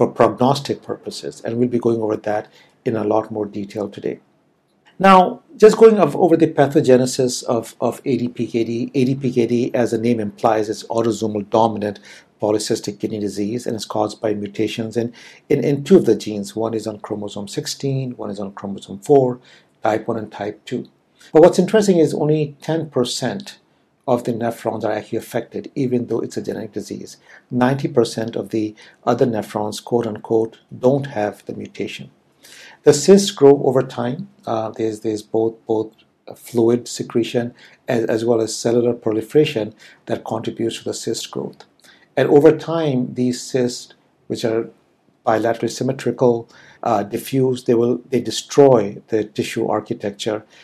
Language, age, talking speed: English, 60-79, 160 wpm